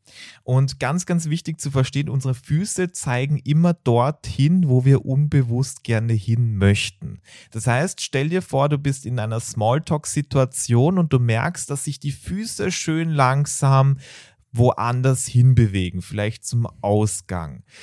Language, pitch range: German, 120-145 Hz